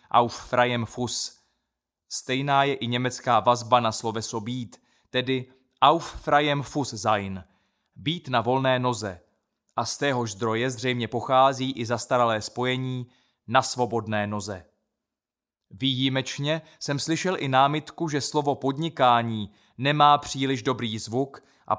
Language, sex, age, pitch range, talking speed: Czech, male, 20-39, 115-135 Hz, 120 wpm